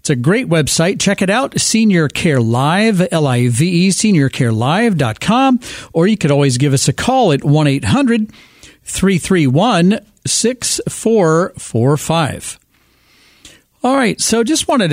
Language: English